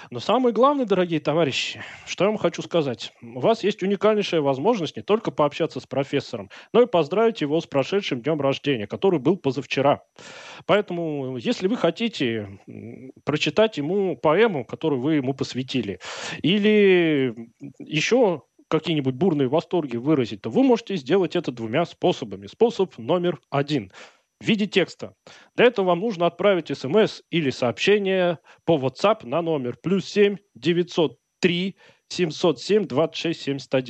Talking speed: 130 wpm